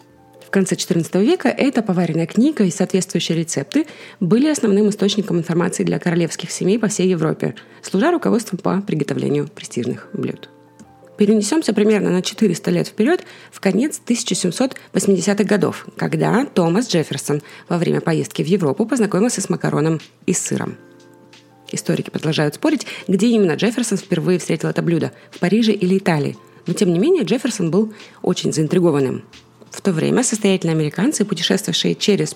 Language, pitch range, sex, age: Russian, 170-220 Hz, female, 20-39